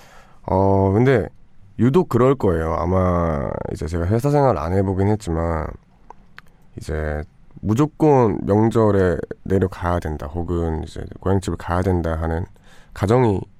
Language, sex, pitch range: Korean, male, 85-110 Hz